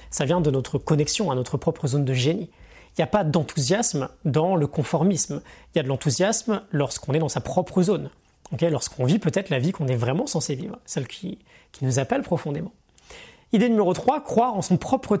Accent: French